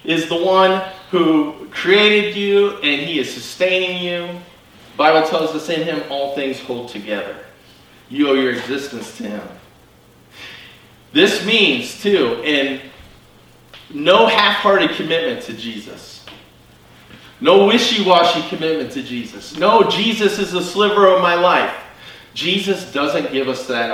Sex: male